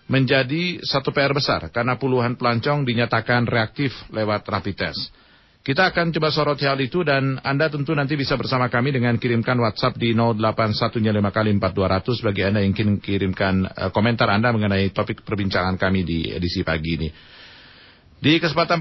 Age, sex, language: 40-59, male, Indonesian